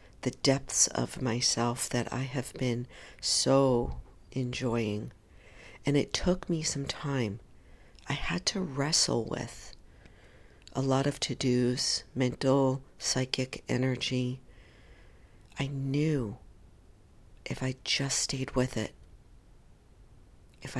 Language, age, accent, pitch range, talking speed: English, 50-69, American, 105-135 Hz, 105 wpm